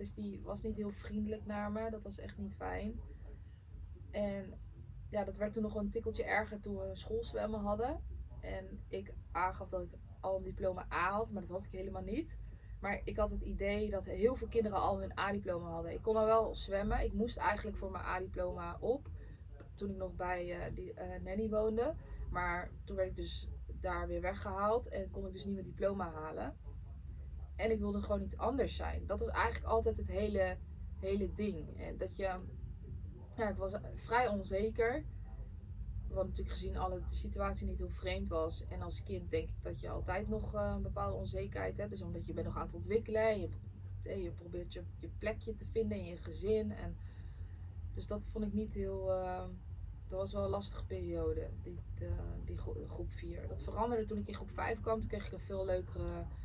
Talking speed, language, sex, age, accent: 205 wpm, Dutch, female, 20-39, Dutch